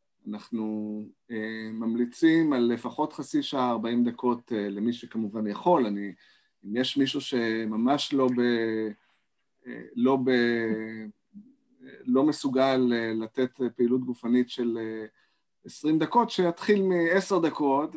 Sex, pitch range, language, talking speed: male, 120-160 Hz, English, 125 wpm